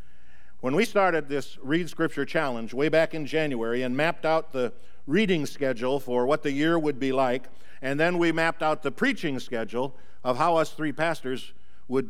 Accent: American